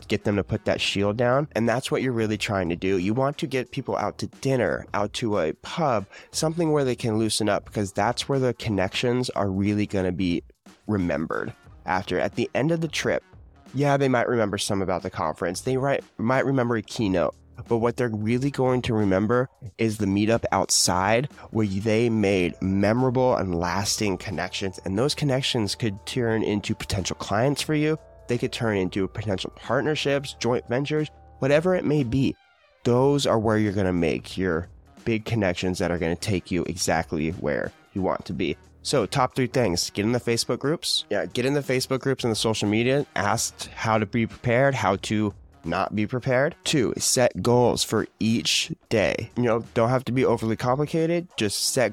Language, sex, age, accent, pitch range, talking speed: English, male, 20-39, American, 100-130 Hz, 200 wpm